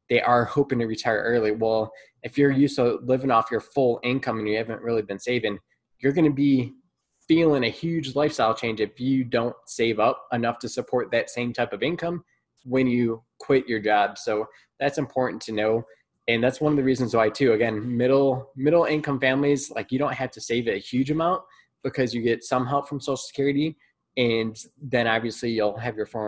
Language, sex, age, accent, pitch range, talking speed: English, male, 20-39, American, 110-135 Hz, 205 wpm